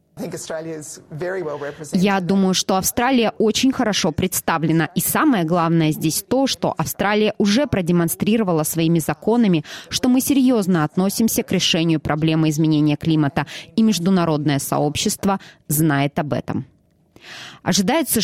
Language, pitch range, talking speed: Russian, 160-210 Hz, 110 wpm